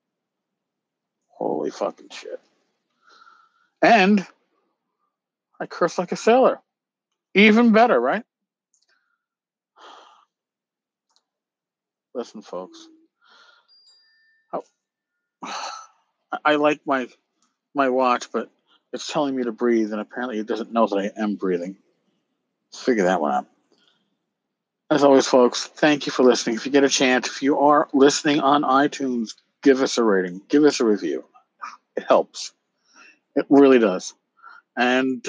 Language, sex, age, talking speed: English, male, 50-69, 120 wpm